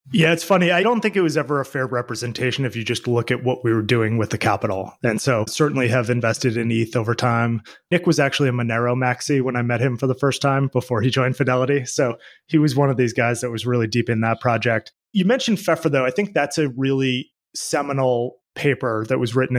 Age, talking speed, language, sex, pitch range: 20-39, 240 wpm, English, male, 115-140 Hz